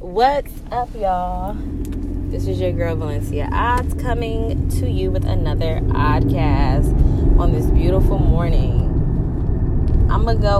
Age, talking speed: 20-39, 125 wpm